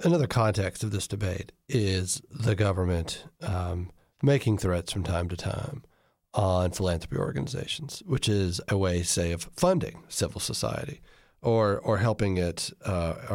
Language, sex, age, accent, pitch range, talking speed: English, male, 40-59, American, 85-110 Hz, 145 wpm